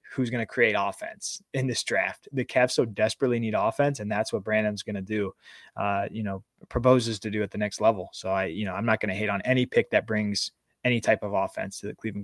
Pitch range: 110-125 Hz